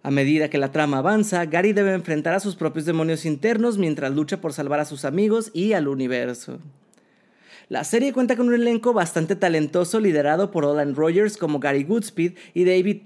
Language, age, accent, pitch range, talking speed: Spanish, 30-49, Mexican, 150-200 Hz, 190 wpm